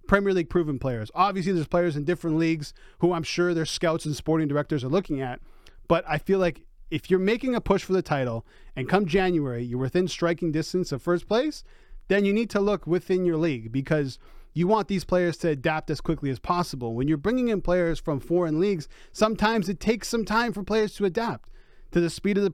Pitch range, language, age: 145-190 Hz, English, 30-49